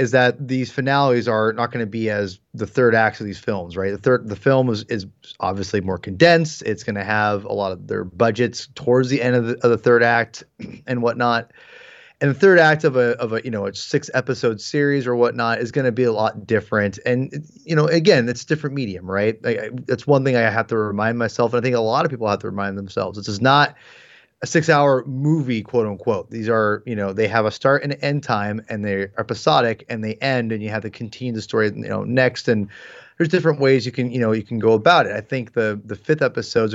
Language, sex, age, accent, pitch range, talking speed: English, male, 30-49, American, 110-135 Hz, 250 wpm